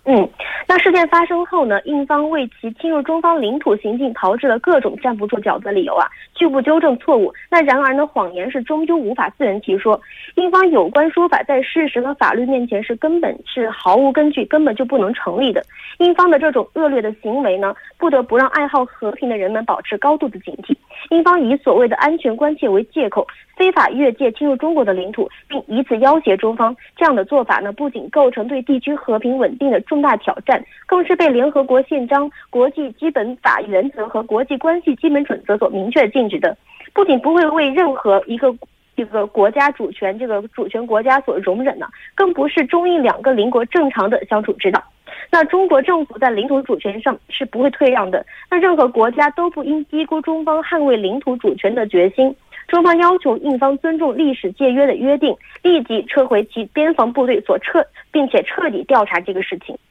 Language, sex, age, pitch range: Korean, female, 20-39, 240-320 Hz